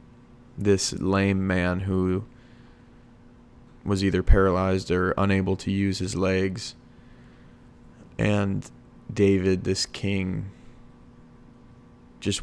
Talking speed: 85 wpm